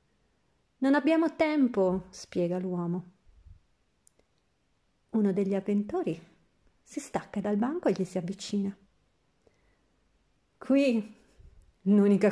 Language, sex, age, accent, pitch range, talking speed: Italian, female, 40-59, native, 190-245 Hz, 90 wpm